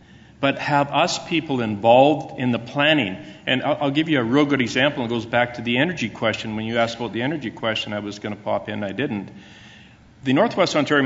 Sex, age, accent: male, 50-69, American